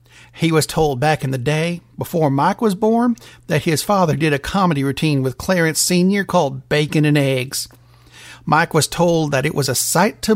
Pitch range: 130-185 Hz